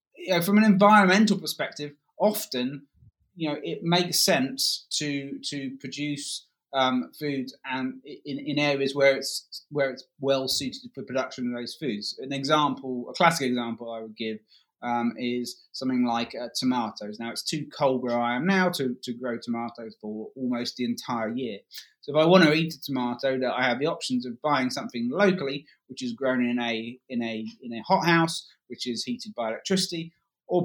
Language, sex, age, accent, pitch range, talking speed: English, male, 20-39, British, 125-165 Hz, 190 wpm